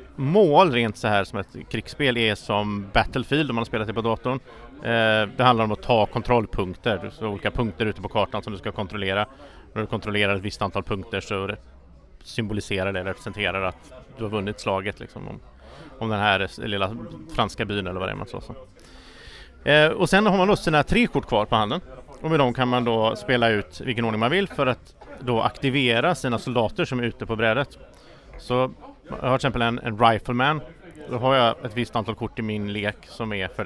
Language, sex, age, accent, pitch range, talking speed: English, male, 30-49, Norwegian, 105-130 Hz, 215 wpm